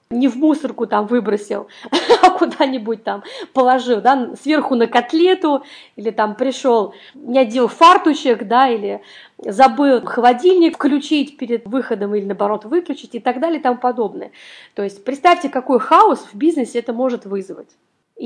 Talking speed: 150 wpm